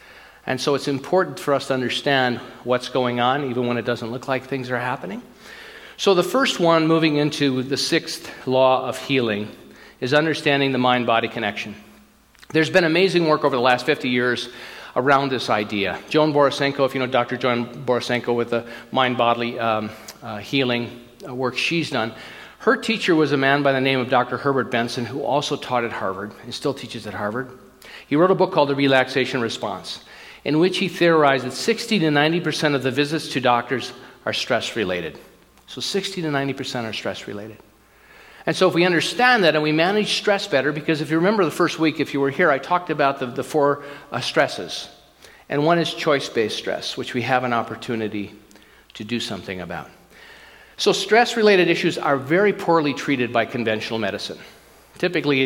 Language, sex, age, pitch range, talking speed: English, male, 40-59, 120-160 Hz, 185 wpm